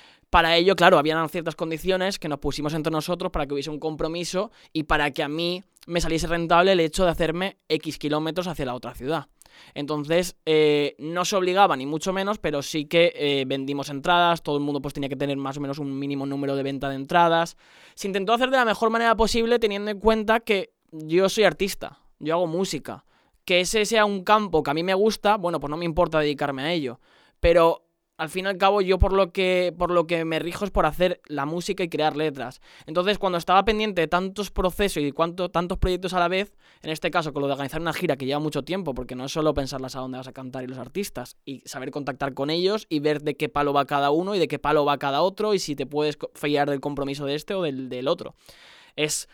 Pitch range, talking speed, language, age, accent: 145-180 Hz, 235 wpm, Spanish, 20-39, Spanish